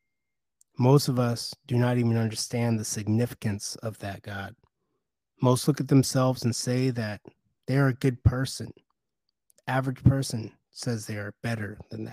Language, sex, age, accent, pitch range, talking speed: English, male, 30-49, American, 115-135 Hz, 155 wpm